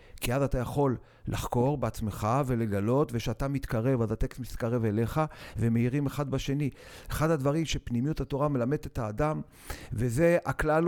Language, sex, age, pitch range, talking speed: Hebrew, male, 50-69, 115-155 Hz, 140 wpm